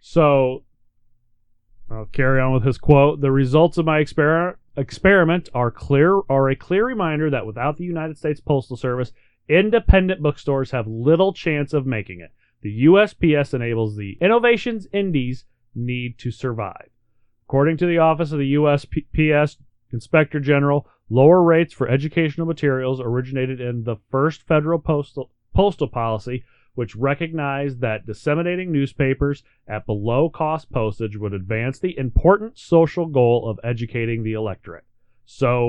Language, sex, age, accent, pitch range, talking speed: English, male, 30-49, American, 115-155 Hz, 140 wpm